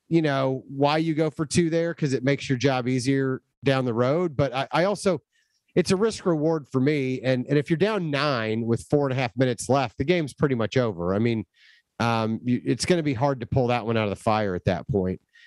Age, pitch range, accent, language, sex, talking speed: 30-49, 125-165 Hz, American, English, male, 250 wpm